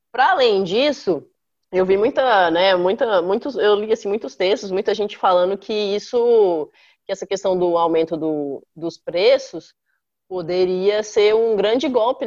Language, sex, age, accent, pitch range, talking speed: Portuguese, female, 20-39, Brazilian, 175-240 Hz, 155 wpm